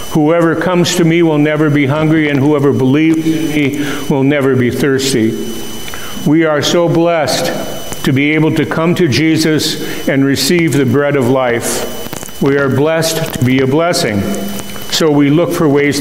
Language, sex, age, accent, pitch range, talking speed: English, male, 50-69, American, 135-160 Hz, 170 wpm